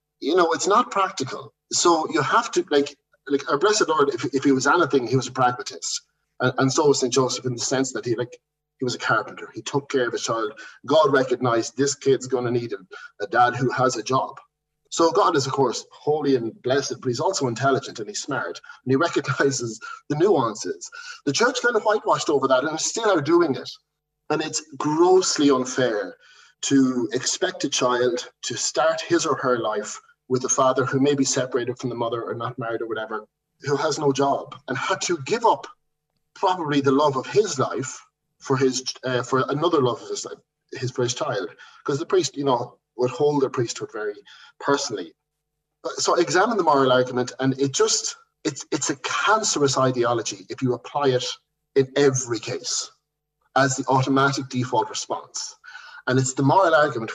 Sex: male